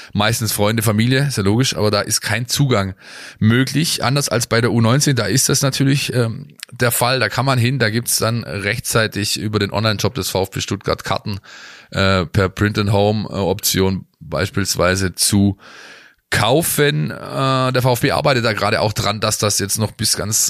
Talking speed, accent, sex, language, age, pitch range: 170 wpm, German, male, German, 20-39, 100-120 Hz